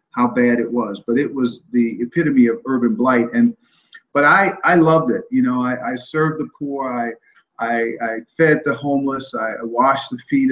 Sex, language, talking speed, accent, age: male, English, 200 wpm, American, 50-69